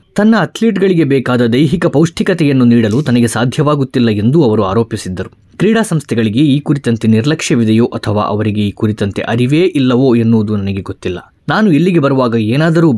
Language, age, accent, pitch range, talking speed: Kannada, 20-39, native, 110-155 Hz, 135 wpm